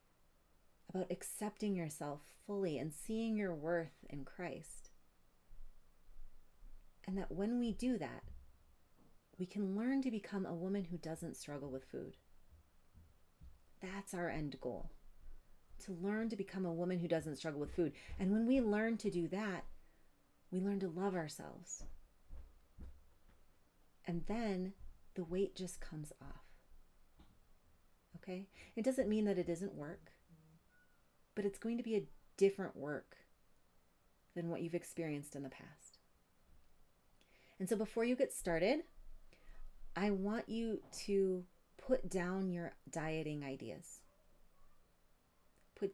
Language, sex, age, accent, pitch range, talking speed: English, female, 30-49, American, 140-195 Hz, 130 wpm